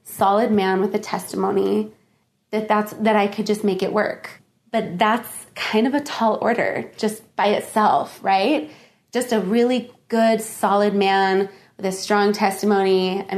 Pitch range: 195-235 Hz